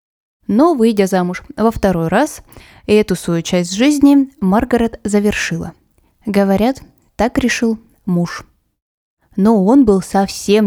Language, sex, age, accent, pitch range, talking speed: Russian, female, 20-39, native, 180-225 Hz, 110 wpm